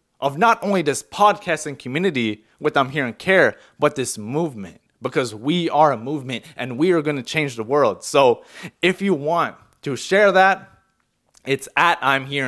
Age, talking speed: 20-39, 185 wpm